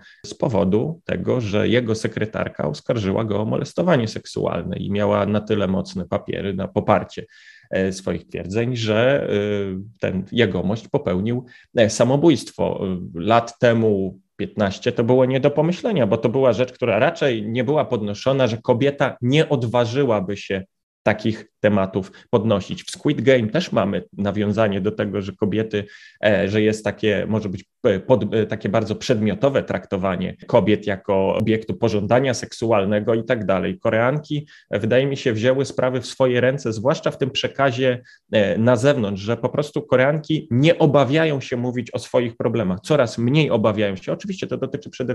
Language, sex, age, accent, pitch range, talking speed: Polish, male, 30-49, native, 105-130 Hz, 150 wpm